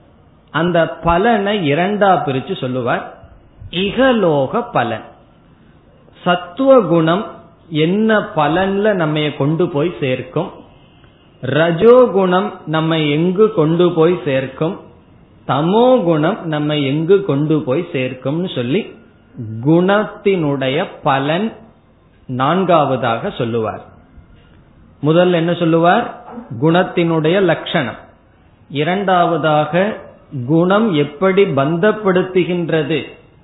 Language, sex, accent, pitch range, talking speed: Tamil, male, native, 145-190 Hz, 70 wpm